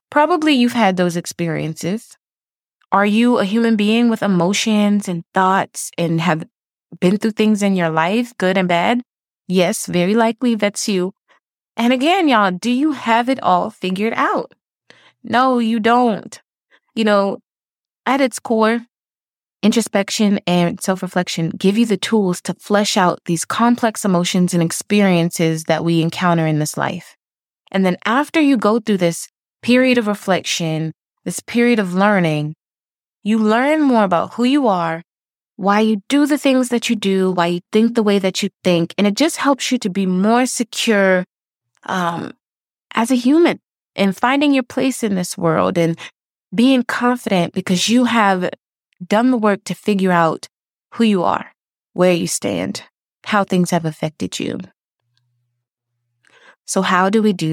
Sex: female